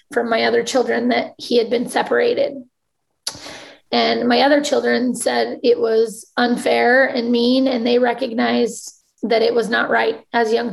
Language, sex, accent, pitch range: English, female, American, 230-255 Hz